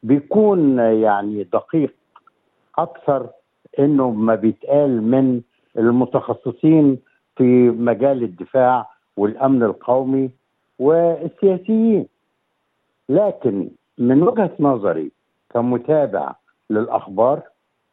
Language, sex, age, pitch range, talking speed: Arabic, male, 60-79, 125-175 Hz, 70 wpm